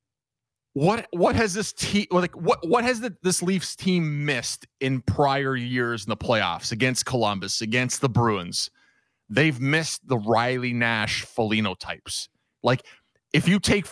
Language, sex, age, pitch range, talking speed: English, male, 30-49, 125-165 Hz, 160 wpm